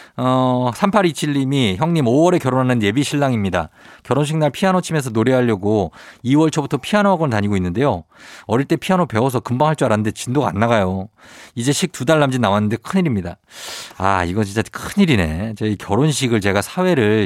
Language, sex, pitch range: Korean, male, 105-170 Hz